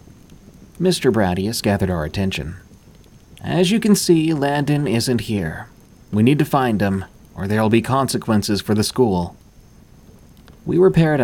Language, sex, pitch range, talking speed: English, male, 90-115 Hz, 145 wpm